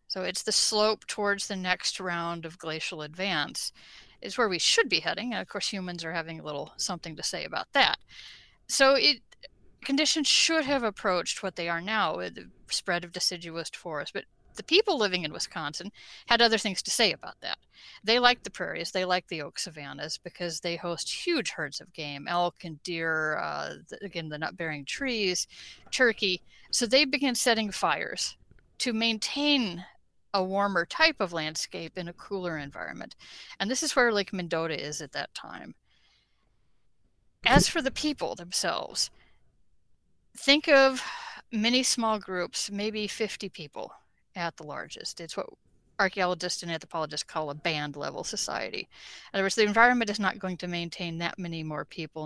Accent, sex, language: American, female, English